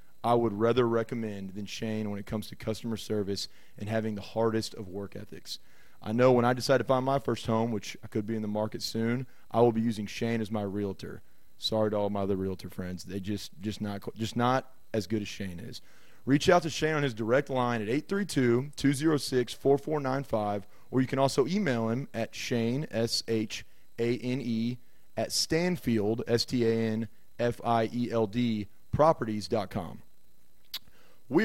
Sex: male